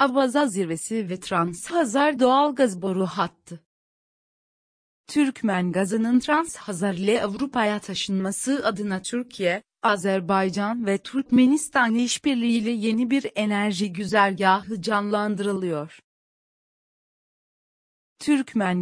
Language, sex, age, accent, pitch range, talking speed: Turkish, female, 40-59, native, 195-245 Hz, 85 wpm